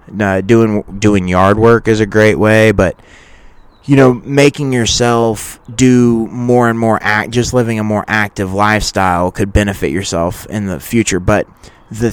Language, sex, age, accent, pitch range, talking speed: English, male, 20-39, American, 95-115 Hz, 165 wpm